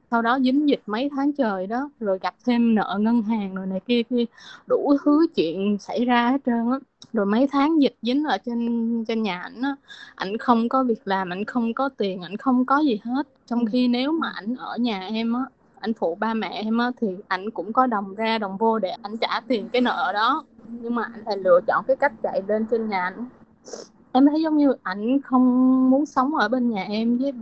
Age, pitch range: 20-39, 210-260 Hz